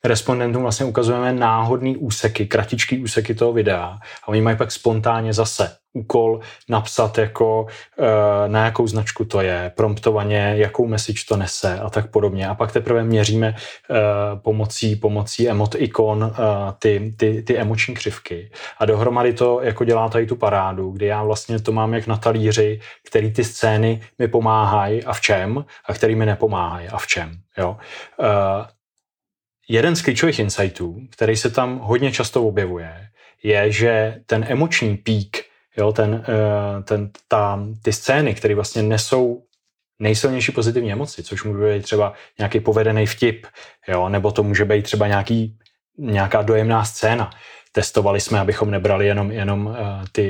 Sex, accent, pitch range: male, native, 105-115 Hz